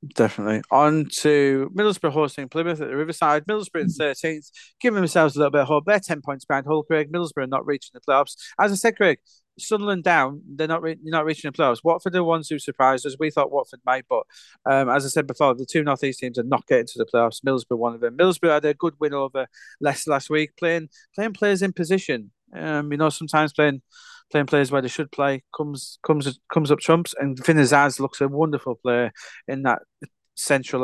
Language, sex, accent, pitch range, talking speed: English, male, British, 130-160 Hz, 225 wpm